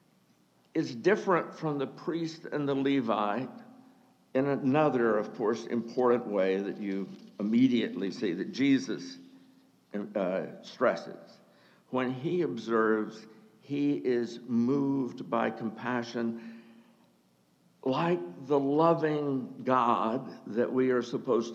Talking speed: 105 wpm